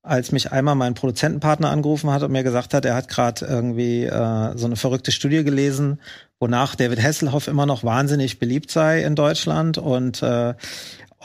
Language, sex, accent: German, male, German